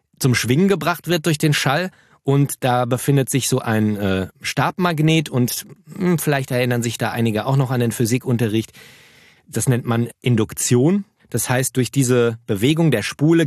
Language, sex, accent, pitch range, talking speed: German, male, German, 110-135 Hz, 170 wpm